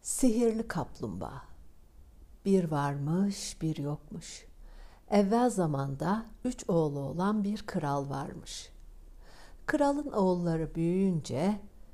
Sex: female